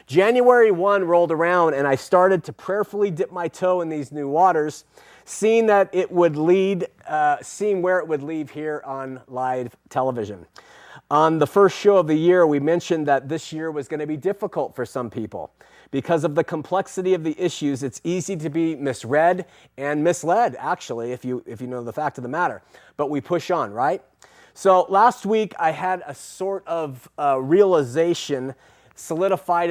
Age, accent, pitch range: 30-49, American, 140-180 Hz